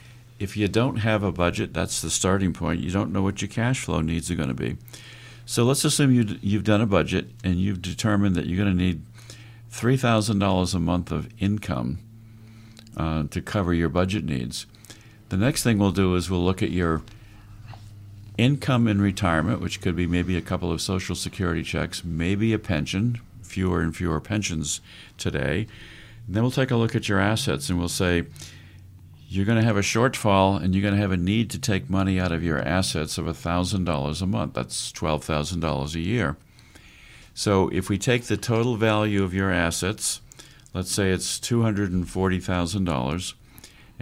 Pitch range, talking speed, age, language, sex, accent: 90-110 Hz, 180 wpm, 50-69, English, male, American